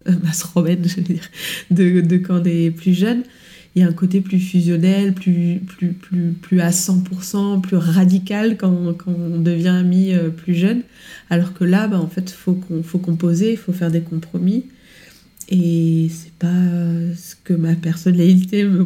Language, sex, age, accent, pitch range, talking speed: French, female, 20-39, French, 175-190 Hz, 170 wpm